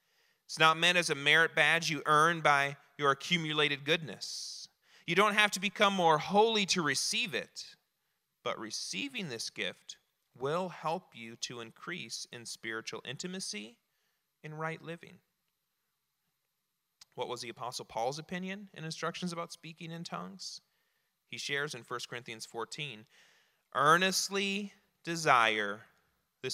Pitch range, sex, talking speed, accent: 150-205 Hz, male, 135 wpm, American